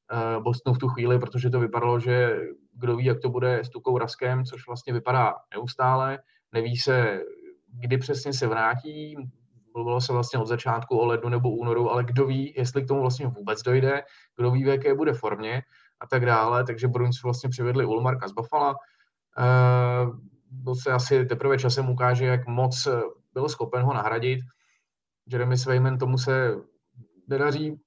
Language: Czech